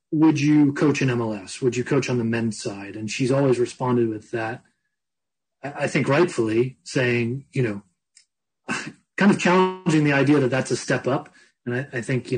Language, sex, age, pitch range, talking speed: English, male, 30-49, 115-135 Hz, 190 wpm